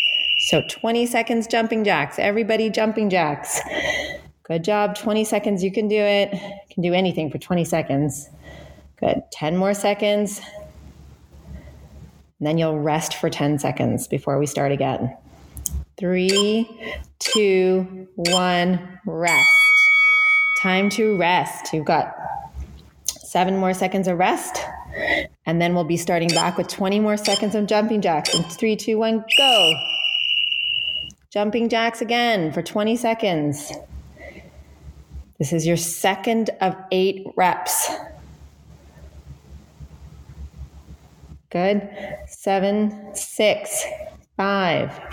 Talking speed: 115 wpm